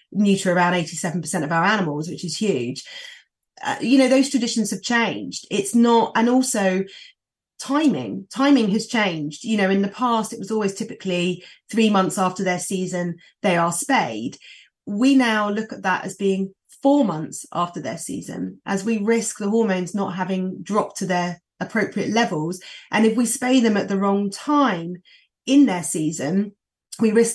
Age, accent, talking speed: 30-49, British, 175 wpm